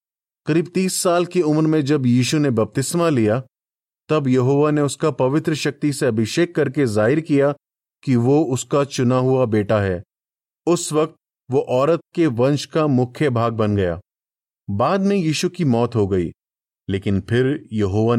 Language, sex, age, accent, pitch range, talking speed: Hindi, male, 30-49, native, 110-150 Hz, 165 wpm